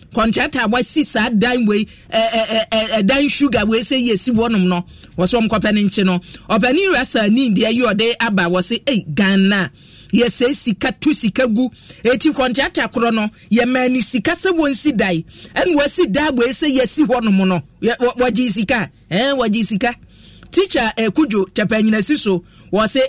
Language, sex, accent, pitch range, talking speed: English, male, Nigerian, 190-240 Hz, 150 wpm